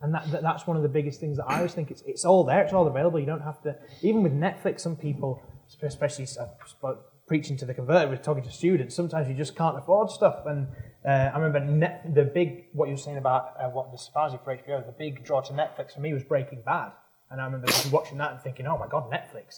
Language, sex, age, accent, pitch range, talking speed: English, male, 20-39, British, 135-160 Hz, 255 wpm